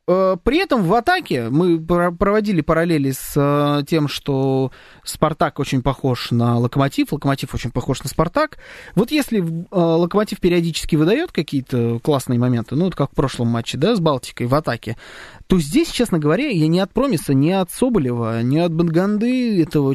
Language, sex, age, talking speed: Russian, male, 20-39, 160 wpm